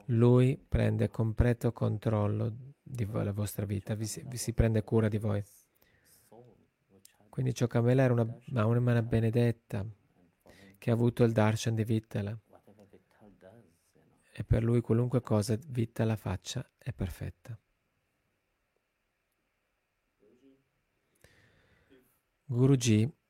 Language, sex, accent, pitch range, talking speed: Italian, male, native, 105-120 Hz, 105 wpm